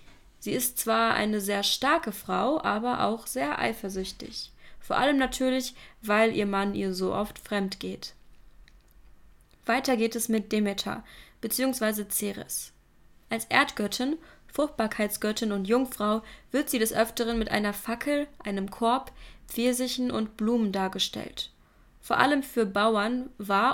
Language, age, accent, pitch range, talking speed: German, 20-39, German, 200-245 Hz, 130 wpm